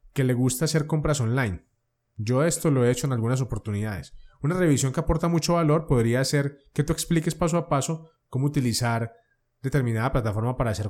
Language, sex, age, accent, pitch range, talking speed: Spanish, male, 20-39, Colombian, 120-155 Hz, 185 wpm